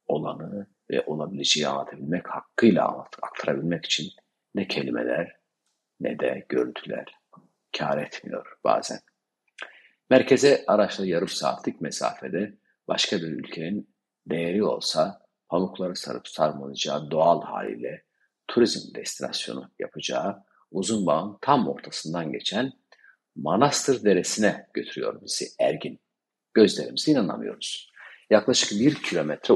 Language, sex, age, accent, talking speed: Turkish, male, 50-69, native, 95 wpm